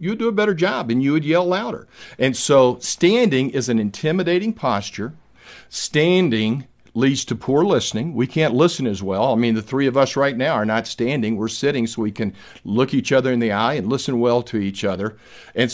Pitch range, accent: 110-145 Hz, American